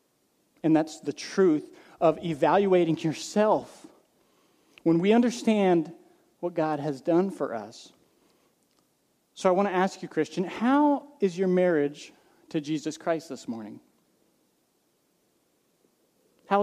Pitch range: 165-215 Hz